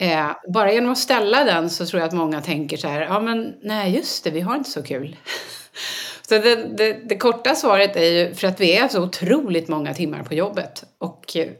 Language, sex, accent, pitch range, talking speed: Swedish, female, native, 160-220 Hz, 215 wpm